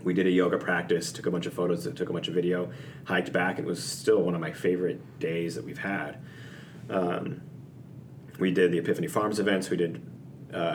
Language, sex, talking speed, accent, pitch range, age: English, male, 220 wpm, American, 85-100 Hz, 30-49